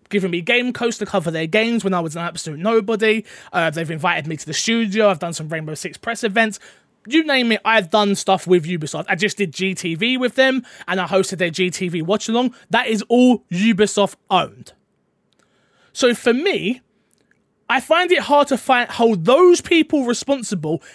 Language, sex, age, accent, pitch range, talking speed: English, male, 20-39, British, 185-255 Hz, 185 wpm